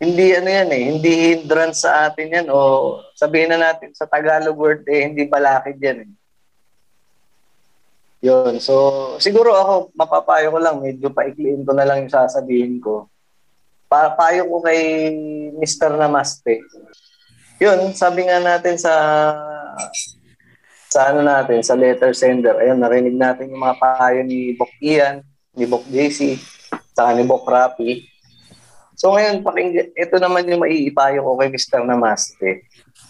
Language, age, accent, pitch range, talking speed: Filipino, 20-39, native, 130-175 Hz, 145 wpm